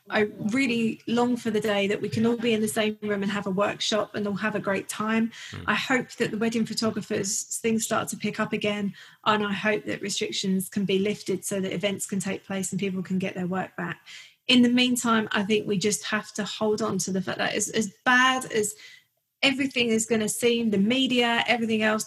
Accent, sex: British, female